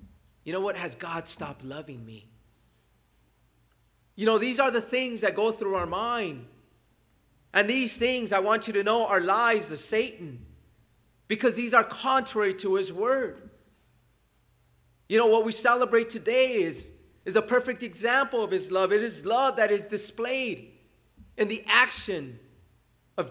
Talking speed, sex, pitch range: 160 wpm, male, 180-240 Hz